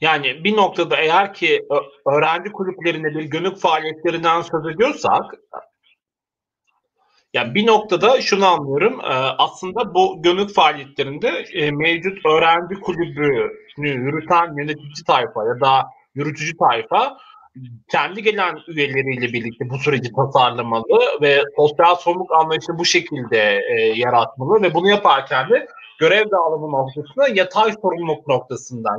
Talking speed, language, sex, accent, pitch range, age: 115 wpm, Turkish, male, native, 140-200 Hz, 30-49